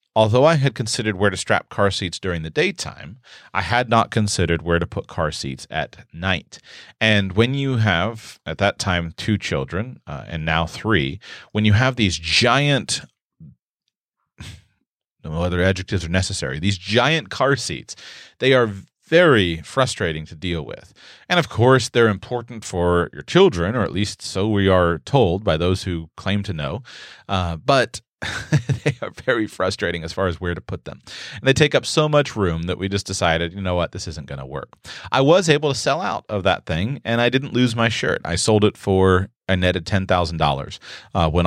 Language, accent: English, American